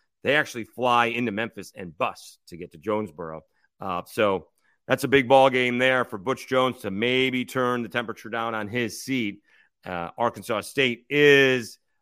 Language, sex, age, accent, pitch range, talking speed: English, male, 40-59, American, 120-170 Hz, 175 wpm